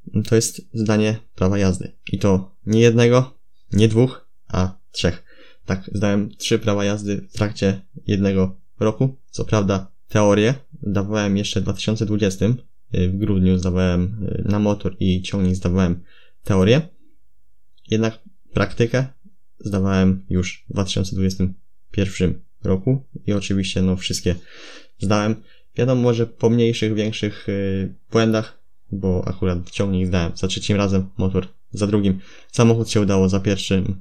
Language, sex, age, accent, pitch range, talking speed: Polish, male, 20-39, native, 95-115 Hz, 125 wpm